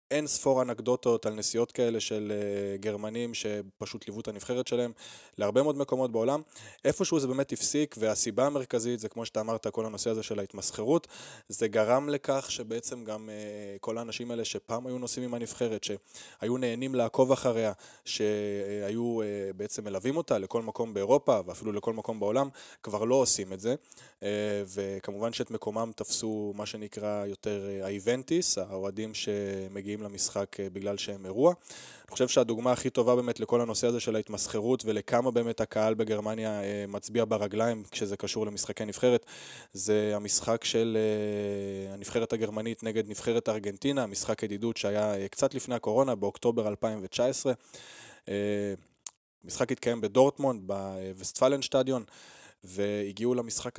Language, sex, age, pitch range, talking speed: Hebrew, male, 20-39, 105-120 Hz, 140 wpm